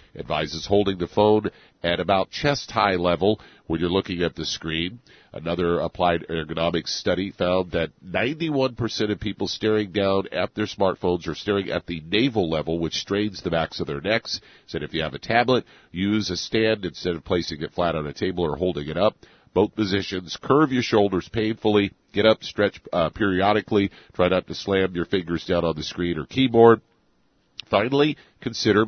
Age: 50-69